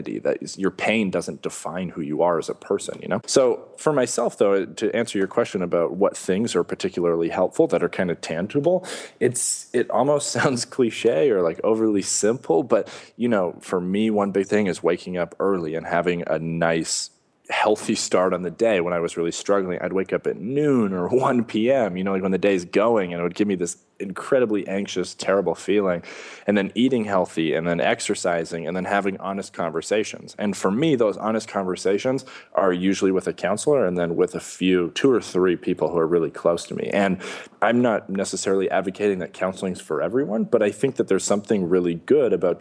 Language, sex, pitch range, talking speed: English, male, 85-110 Hz, 210 wpm